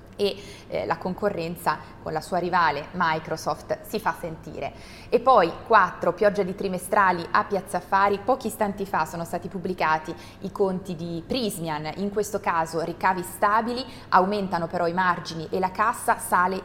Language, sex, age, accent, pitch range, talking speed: Italian, female, 20-39, native, 170-205 Hz, 155 wpm